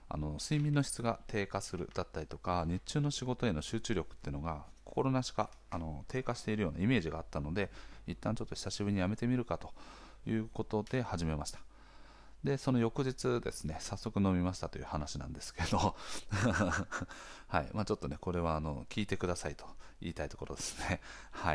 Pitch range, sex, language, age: 80-115 Hz, male, Japanese, 40-59